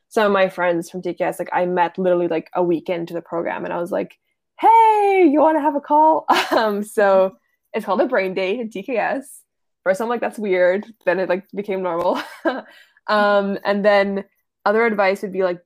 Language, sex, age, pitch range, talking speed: English, female, 20-39, 180-220 Hz, 205 wpm